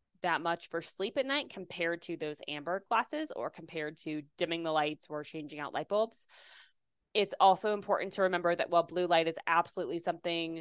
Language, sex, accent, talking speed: English, female, American, 190 wpm